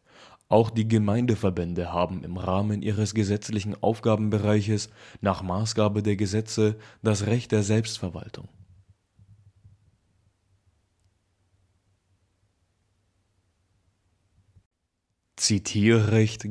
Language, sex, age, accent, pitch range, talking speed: German, male, 20-39, German, 95-110 Hz, 65 wpm